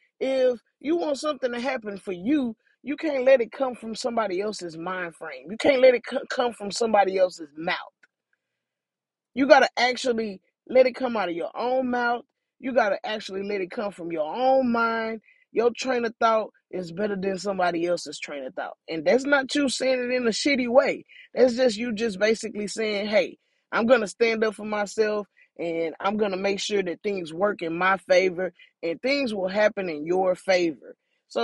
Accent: American